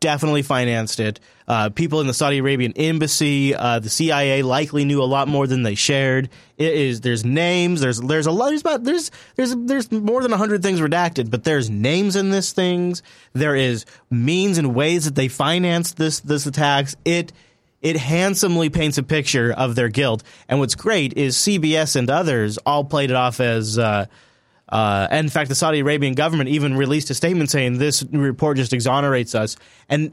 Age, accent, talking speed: 30-49, American, 195 wpm